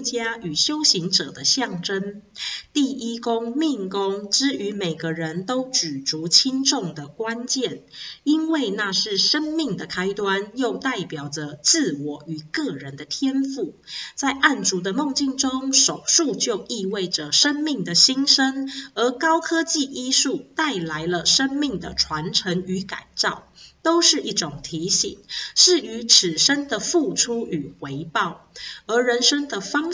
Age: 30-49